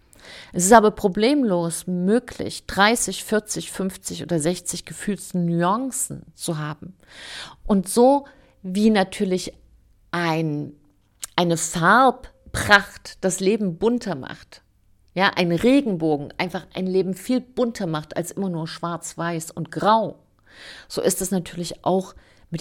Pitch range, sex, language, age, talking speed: 165-215 Hz, female, German, 50-69, 125 wpm